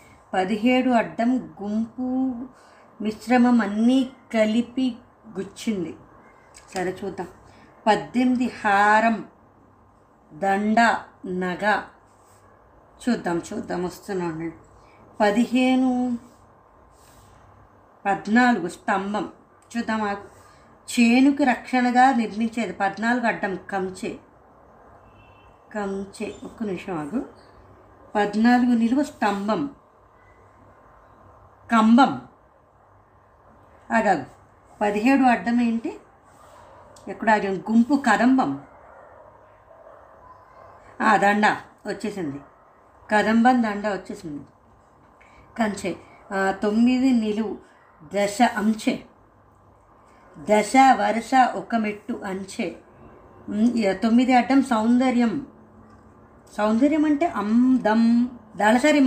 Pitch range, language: 195-245 Hz, Telugu